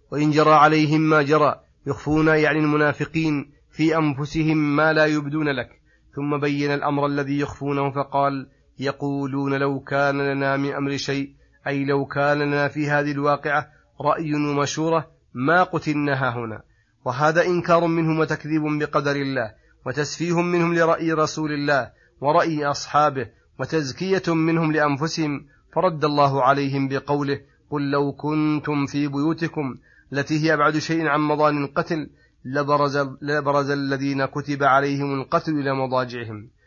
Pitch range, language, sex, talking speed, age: 140-155 Hz, Arabic, male, 130 wpm, 30-49